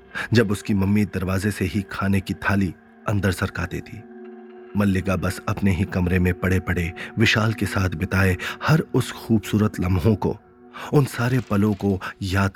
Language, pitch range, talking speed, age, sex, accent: Hindi, 95-110 Hz, 160 wpm, 30-49, male, native